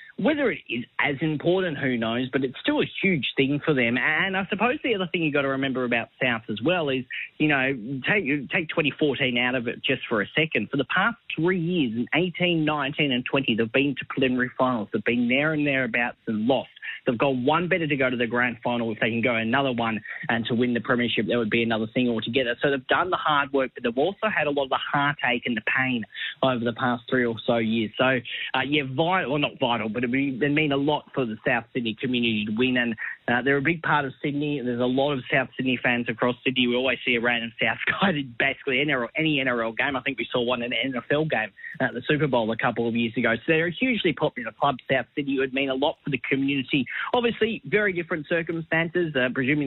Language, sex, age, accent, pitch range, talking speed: English, male, 20-39, Australian, 120-150 Hz, 250 wpm